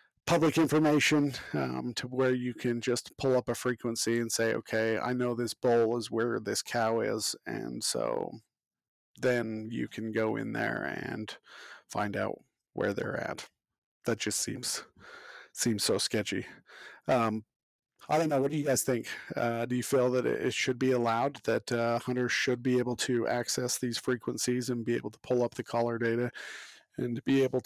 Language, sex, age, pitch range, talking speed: English, male, 40-59, 115-130 Hz, 180 wpm